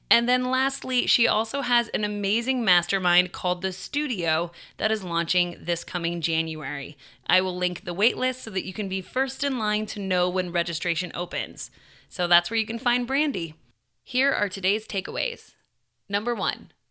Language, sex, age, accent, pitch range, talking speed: English, female, 20-39, American, 180-230 Hz, 175 wpm